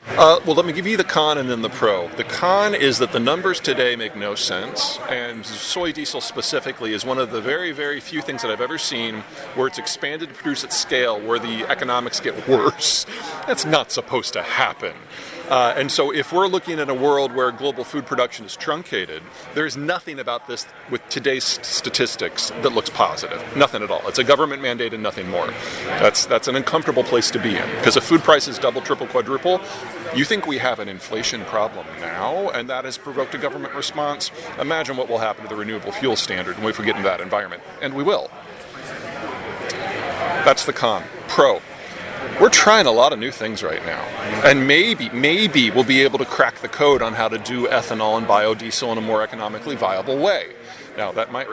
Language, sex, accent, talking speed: English, male, American, 205 wpm